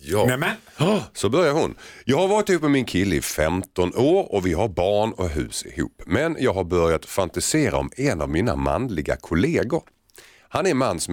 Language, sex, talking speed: Swedish, male, 200 wpm